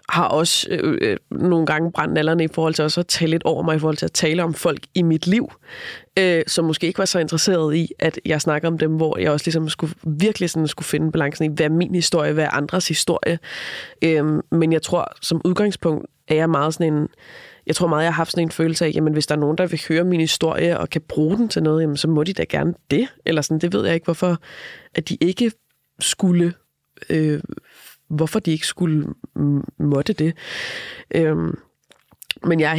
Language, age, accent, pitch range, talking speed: Danish, 20-39, native, 155-175 Hz, 230 wpm